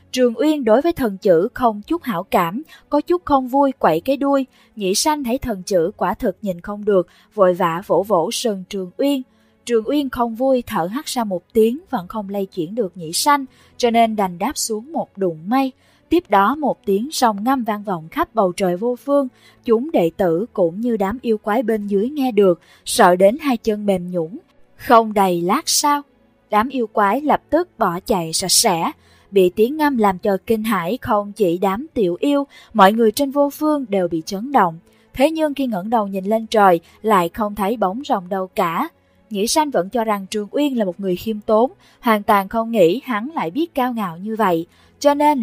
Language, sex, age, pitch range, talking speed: English, female, 20-39, 195-260 Hz, 215 wpm